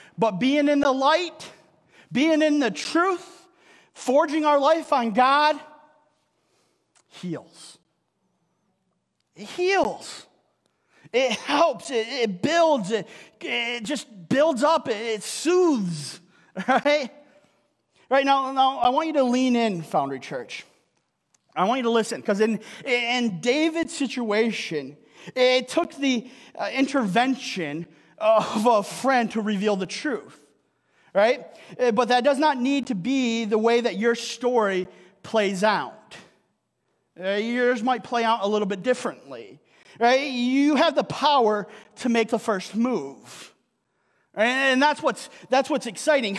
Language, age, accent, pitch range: English, 40-59, American, 215-285 Hz